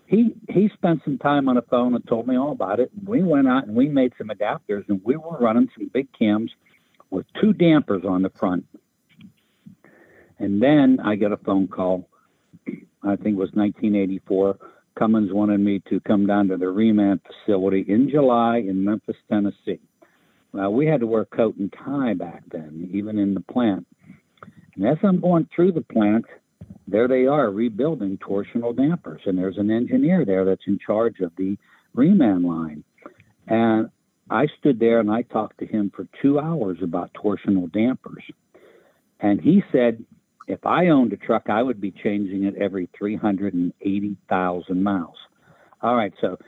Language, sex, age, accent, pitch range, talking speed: English, male, 60-79, American, 100-130 Hz, 175 wpm